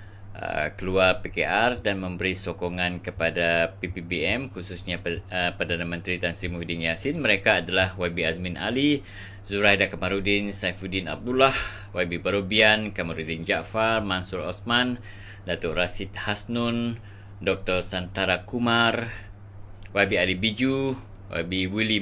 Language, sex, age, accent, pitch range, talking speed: English, male, 20-39, Indonesian, 85-100 Hz, 110 wpm